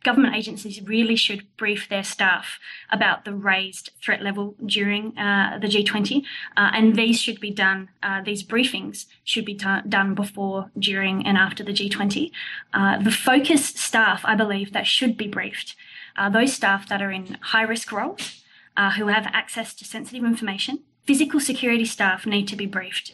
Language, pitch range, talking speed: English, 195-225 Hz, 170 wpm